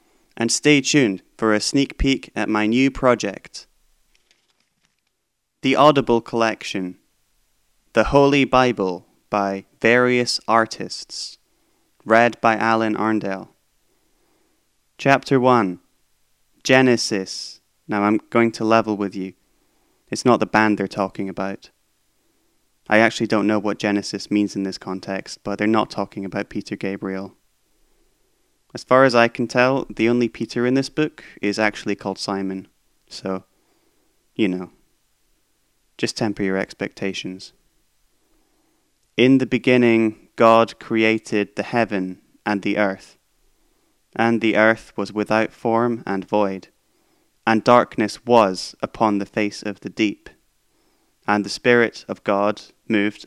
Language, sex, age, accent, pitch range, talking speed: English, male, 20-39, British, 100-120 Hz, 130 wpm